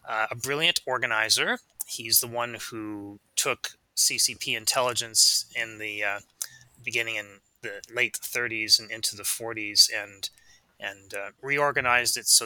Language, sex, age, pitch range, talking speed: English, male, 30-49, 110-125 Hz, 140 wpm